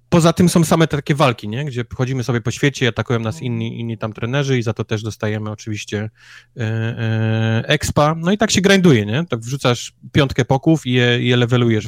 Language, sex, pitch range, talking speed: Polish, male, 115-140 Hz, 205 wpm